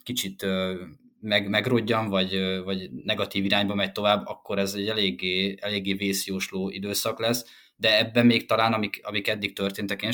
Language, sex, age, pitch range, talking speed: Hungarian, male, 20-39, 95-115 Hz, 150 wpm